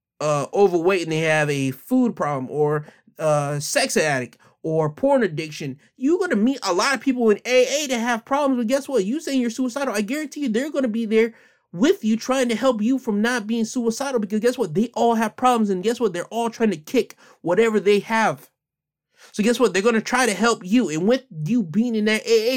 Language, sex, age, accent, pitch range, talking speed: English, male, 30-49, American, 170-245 Hz, 235 wpm